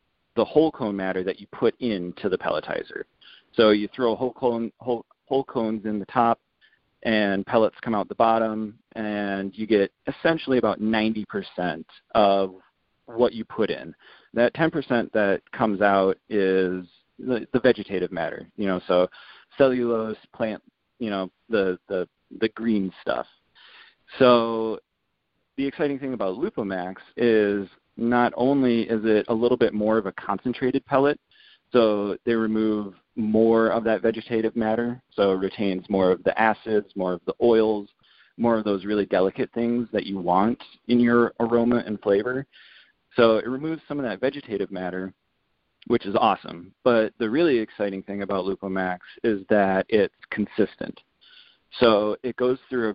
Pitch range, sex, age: 100-120 Hz, male, 40-59